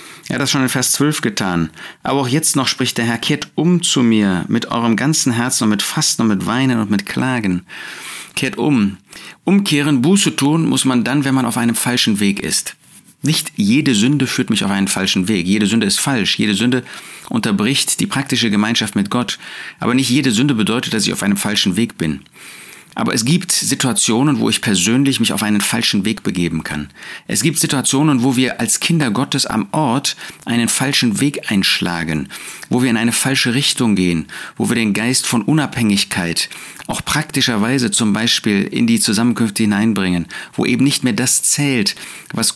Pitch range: 105-140 Hz